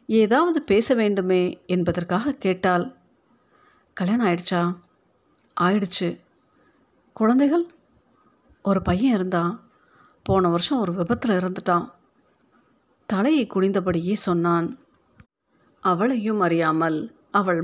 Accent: native